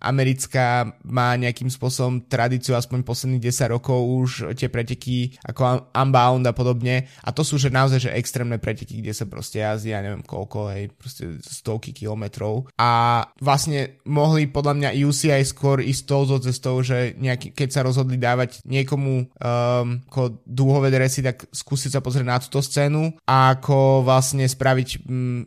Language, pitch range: Slovak, 125-140 Hz